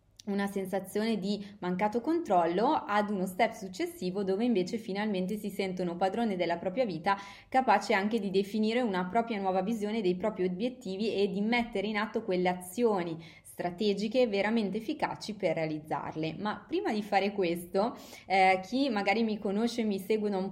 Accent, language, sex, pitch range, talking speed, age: native, Italian, female, 180-220 Hz, 160 wpm, 20-39